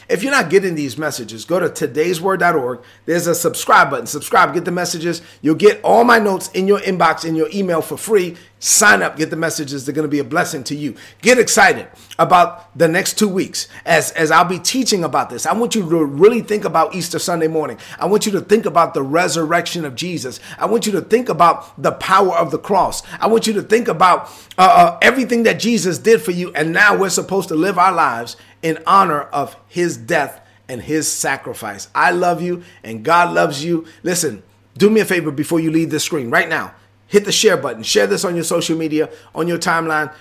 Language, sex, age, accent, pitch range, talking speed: English, male, 30-49, American, 150-180 Hz, 225 wpm